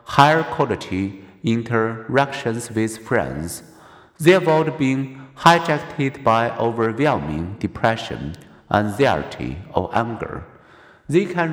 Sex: male